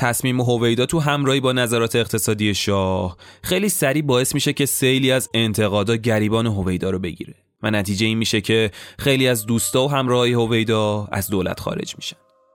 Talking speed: 165 wpm